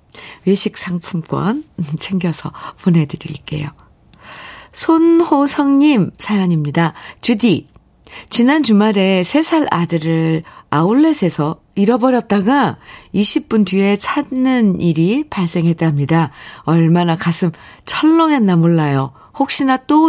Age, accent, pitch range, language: 50-69, native, 165-240 Hz, Korean